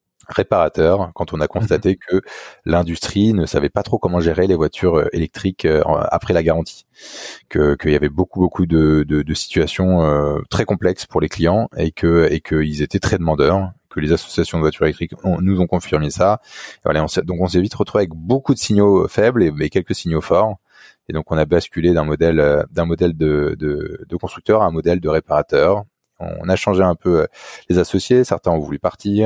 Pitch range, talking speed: 80-95 Hz, 205 wpm